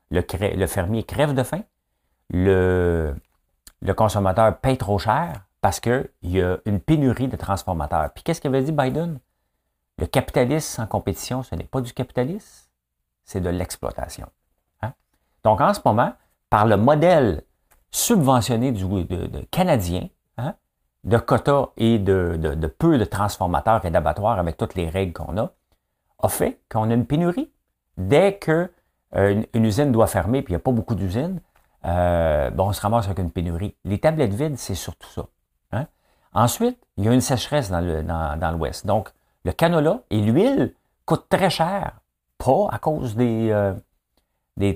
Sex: male